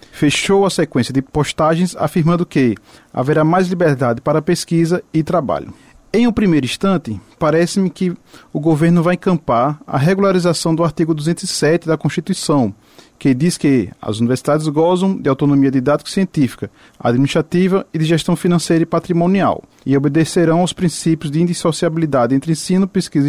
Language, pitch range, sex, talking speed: Portuguese, 145-175 Hz, male, 145 wpm